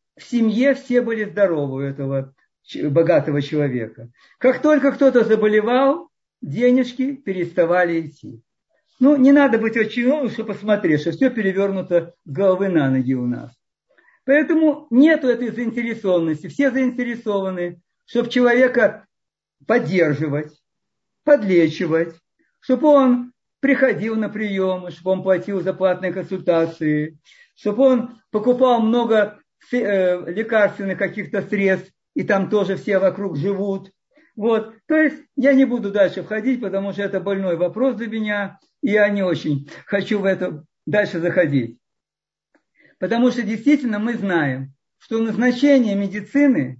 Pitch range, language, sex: 180-245 Hz, Russian, male